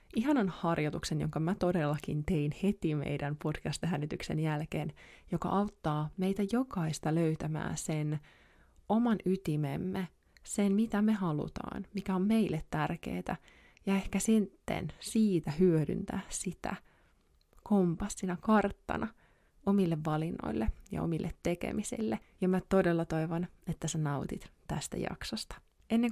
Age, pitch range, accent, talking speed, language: 20-39, 165-195 Hz, native, 115 wpm, Finnish